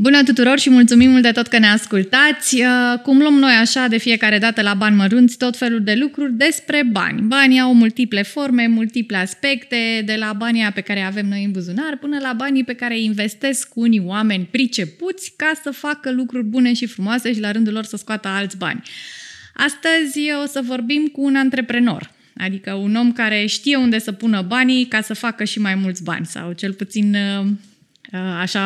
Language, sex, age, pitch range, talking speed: Romanian, female, 20-39, 200-250 Hz, 195 wpm